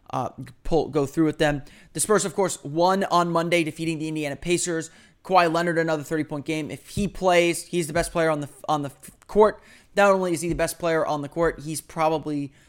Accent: American